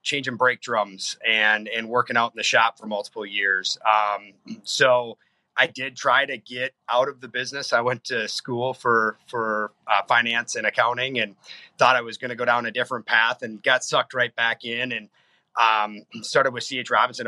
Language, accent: English, American